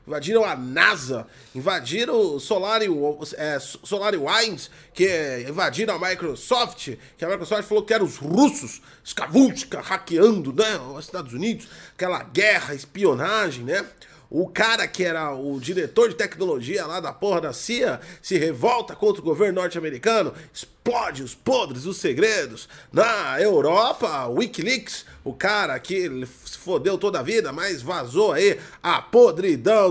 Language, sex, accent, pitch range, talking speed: Portuguese, male, Brazilian, 160-240 Hz, 145 wpm